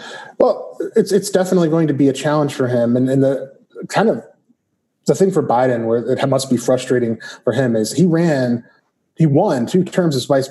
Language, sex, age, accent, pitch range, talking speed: English, male, 30-49, American, 125-155 Hz, 205 wpm